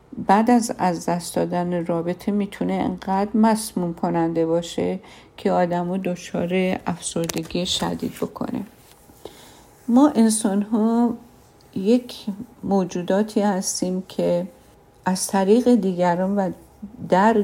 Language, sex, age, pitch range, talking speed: Persian, female, 50-69, 175-210 Hz, 105 wpm